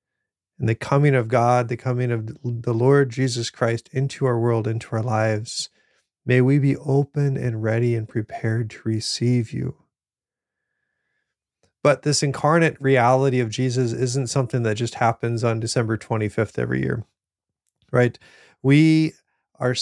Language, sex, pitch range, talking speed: English, male, 115-135 Hz, 145 wpm